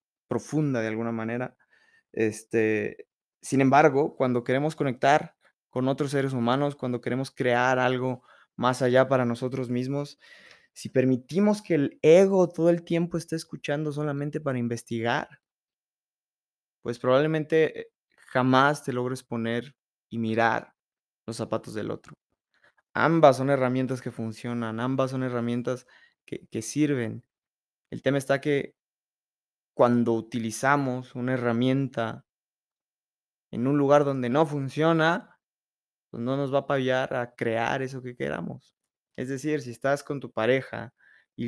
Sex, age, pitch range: male, 20-39, 120-145 Hz